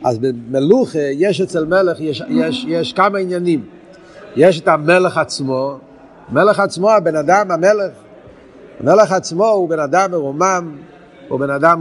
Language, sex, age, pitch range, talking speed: Hebrew, male, 50-69, 165-210 Hz, 140 wpm